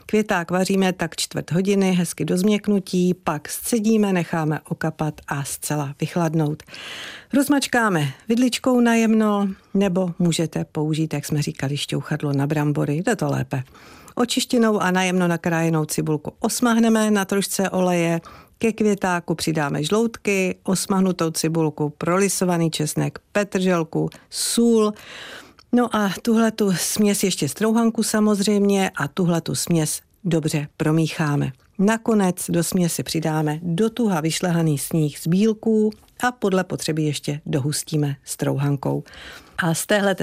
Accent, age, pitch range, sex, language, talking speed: native, 50-69, 155-205 Hz, female, Czech, 120 wpm